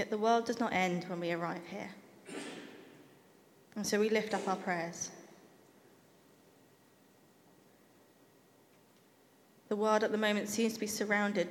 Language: English